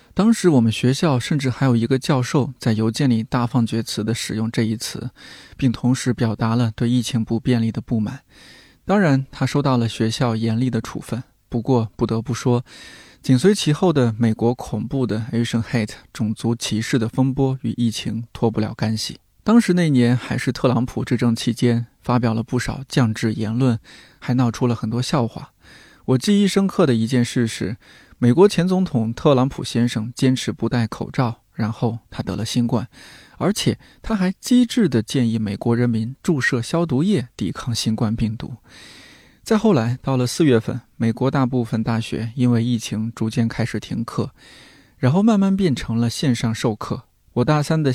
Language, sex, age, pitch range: Chinese, male, 20-39, 115-135 Hz